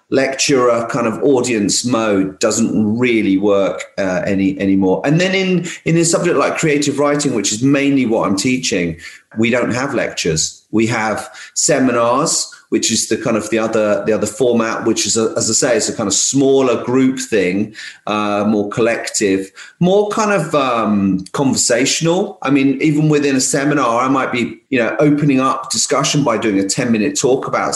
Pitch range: 105-140 Hz